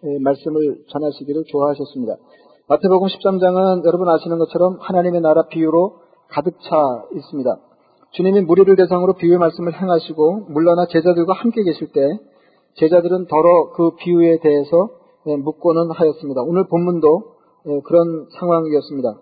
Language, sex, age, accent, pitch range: Korean, male, 40-59, native, 160-185 Hz